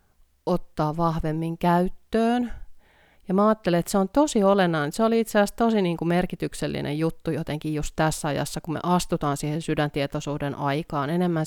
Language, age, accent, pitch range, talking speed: Finnish, 30-49, native, 145-175 Hz, 160 wpm